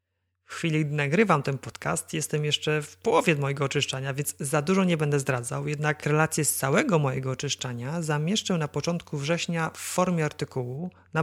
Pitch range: 135-170 Hz